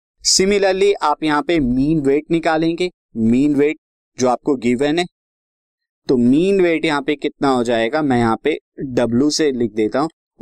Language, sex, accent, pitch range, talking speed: Hindi, male, native, 130-165 Hz, 165 wpm